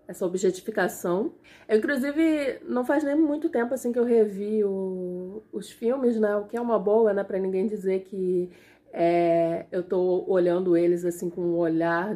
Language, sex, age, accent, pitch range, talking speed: Portuguese, female, 20-39, Brazilian, 180-260 Hz, 165 wpm